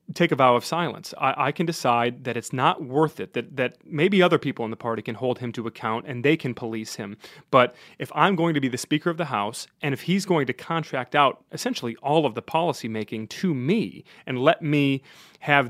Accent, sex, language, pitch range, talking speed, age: American, male, English, 130-175 Hz, 235 wpm, 30-49